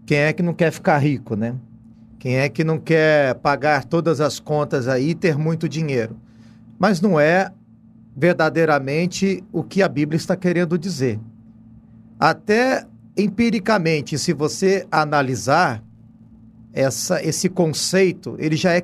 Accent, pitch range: Brazilian, 115-180 Hz